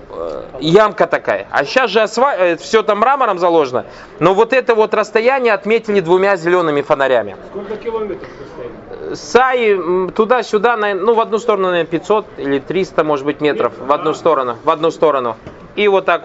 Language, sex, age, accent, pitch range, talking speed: Russian, male, 30-49, native, 165-230 Hz, 165 wpm